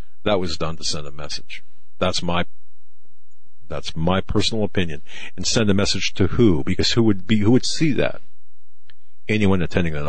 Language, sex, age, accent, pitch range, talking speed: English, male, 50-69, American, 80-100 Hz, 180 wpm